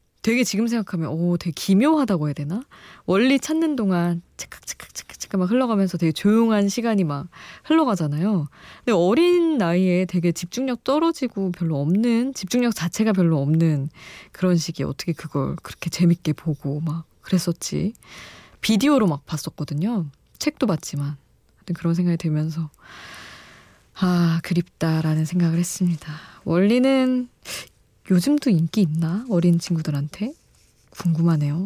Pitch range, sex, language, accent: 160-225 Hz, female, Korean, native